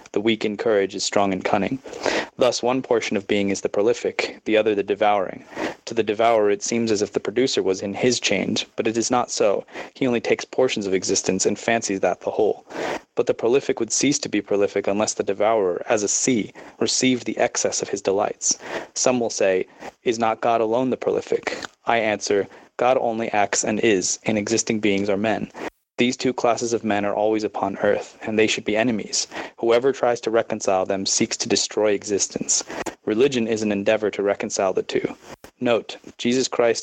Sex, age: male, 20-39